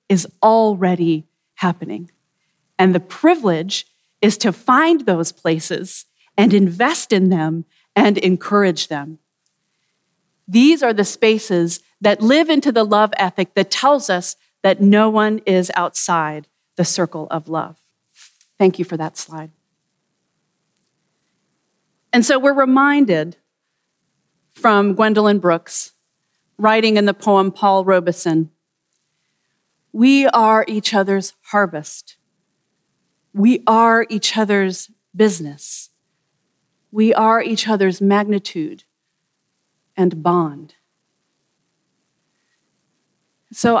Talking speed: 105 wpm